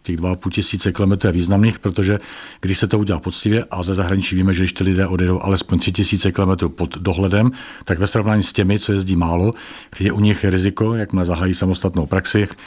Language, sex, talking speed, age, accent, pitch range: Czech, male, 200 wpm, 50-69, native, 90-110 Hz